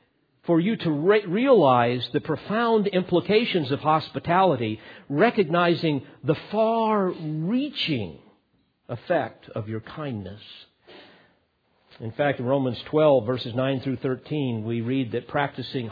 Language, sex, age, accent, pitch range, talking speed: English, male, 50-69, American, 115-155 Hz, 110 wpm